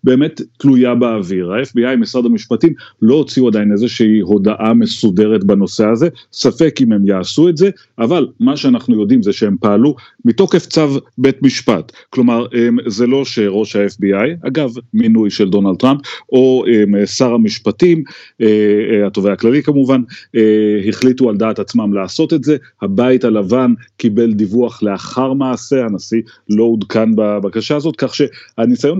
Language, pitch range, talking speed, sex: Hebrew, 110-150 Hz, 140 wpm, male